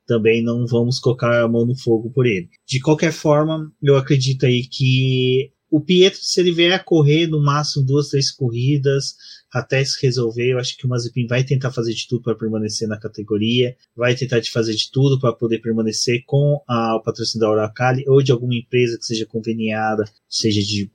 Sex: male